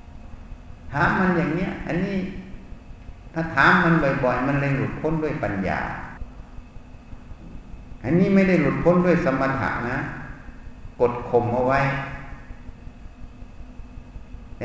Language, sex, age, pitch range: Thai, male, 60-79, 115-165 Hz